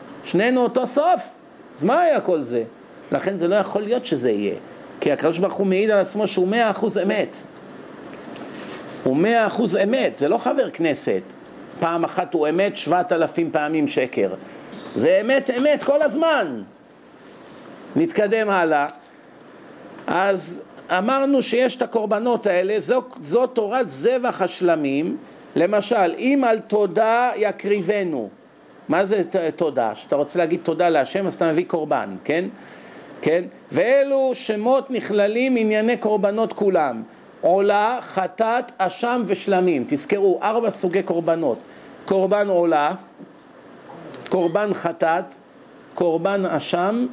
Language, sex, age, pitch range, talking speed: Hebrew, male, 50-69, 180-245 Hz, 125 wpm